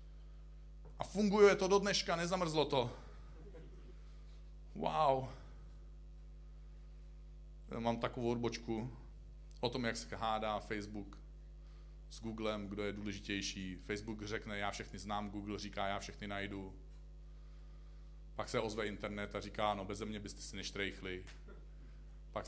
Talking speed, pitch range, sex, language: 125 wpm, 100-160 Hz, male, Czech